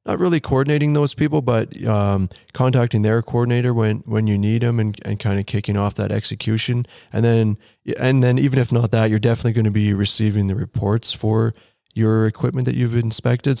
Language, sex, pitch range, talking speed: English, male, 100-115 Hz, 200 wpm